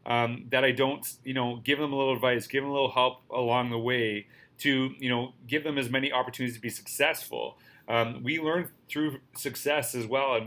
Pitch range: 115-135 Hz